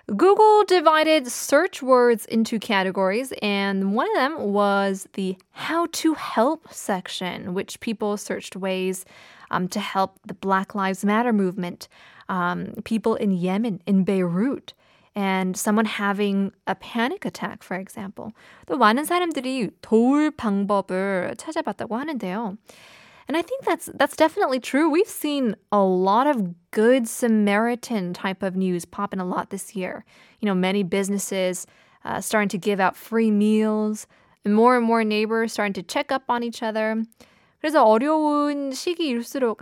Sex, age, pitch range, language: female, 20-39, 195-255 Hz, Korean